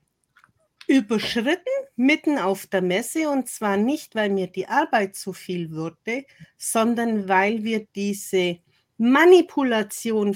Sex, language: female, German